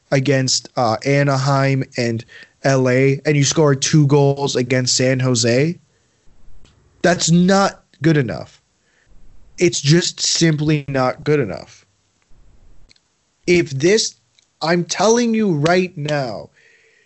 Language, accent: English, American